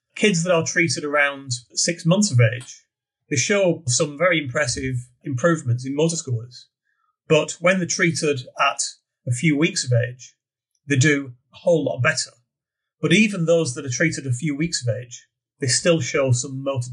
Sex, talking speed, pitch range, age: male, 175 wpm, 125-160 Hz, 40-59